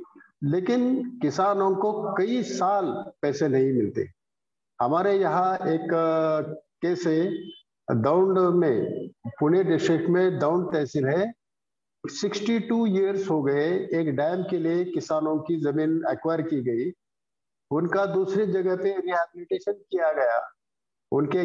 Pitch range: 160-210 Hz